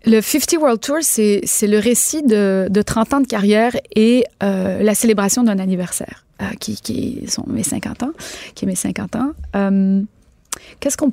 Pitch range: 195-225 Hz